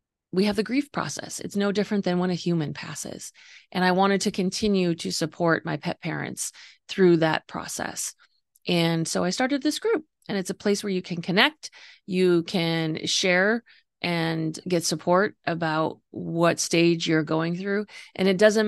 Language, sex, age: English, female, 30-49